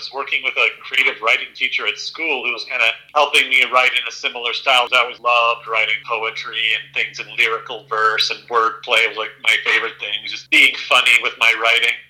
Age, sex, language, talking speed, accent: 40-59, male, English, 210 wpm, American